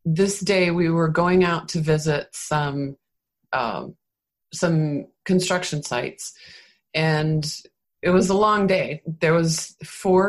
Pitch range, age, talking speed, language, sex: 155-195 Hz, 30-49, 130 wpm, English, female